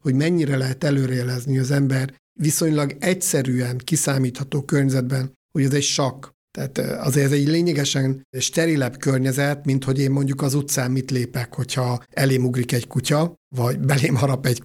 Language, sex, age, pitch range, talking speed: Hungarian, male, 60-79, 130-150 Hz, 155 wpm